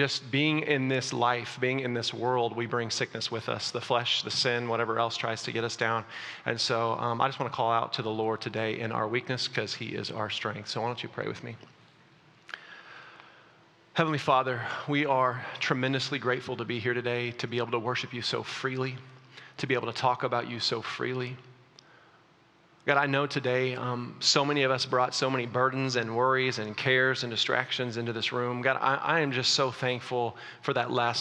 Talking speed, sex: 215 wpm, male